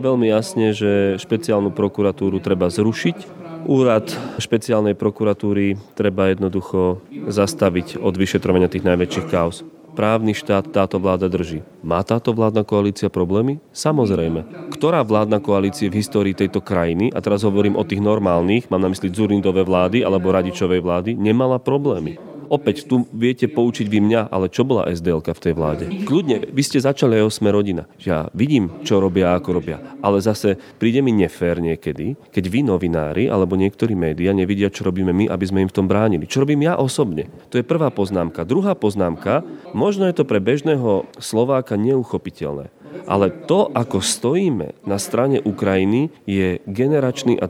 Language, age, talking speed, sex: Slovak, 30-49, 160 wpm, male